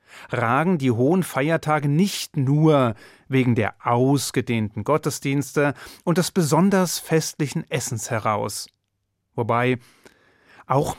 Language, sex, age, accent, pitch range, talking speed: German, male, 30-49, German, 115-150 Hz, 100 wpm